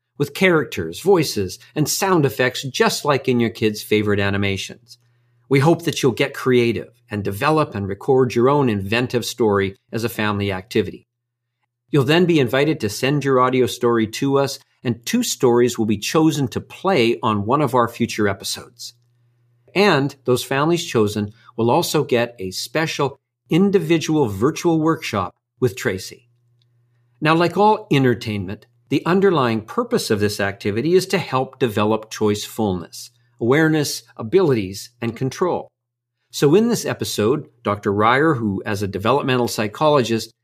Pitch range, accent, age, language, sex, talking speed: 110-145 Hz, American, 50-69, English, male, 150 wpm